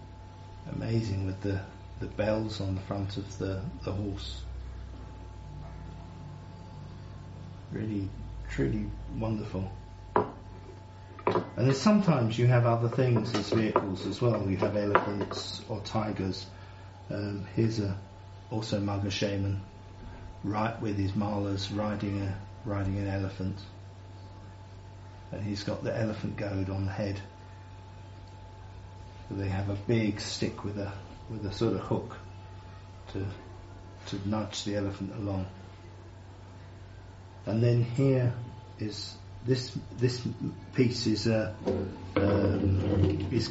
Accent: British